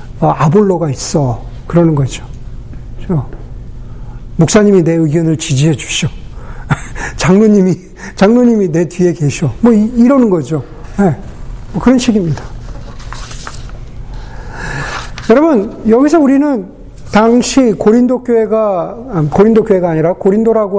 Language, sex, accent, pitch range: Korean, male, native, 155-215 Hz